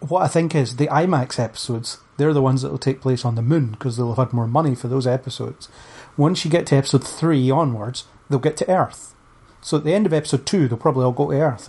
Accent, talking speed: British, 250 wpm